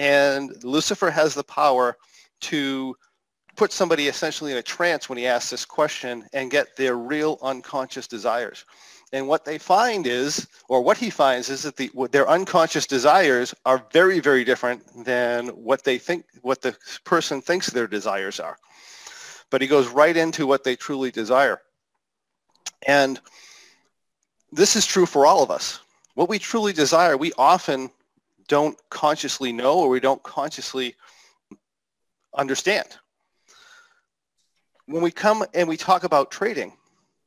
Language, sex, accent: English, male, American